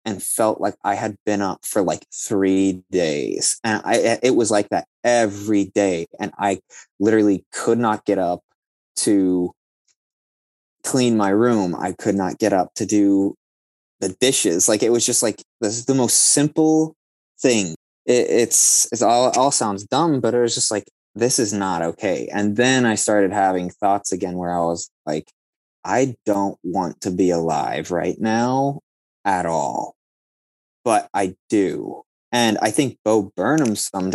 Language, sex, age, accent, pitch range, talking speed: English, male, 20-39, American, 95-115 Hz, 170 wpm